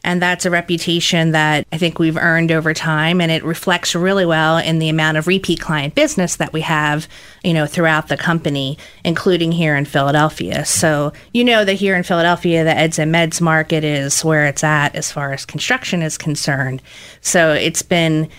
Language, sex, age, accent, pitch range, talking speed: English, female, 30-49, American, 155-190 Hz, 195 wpm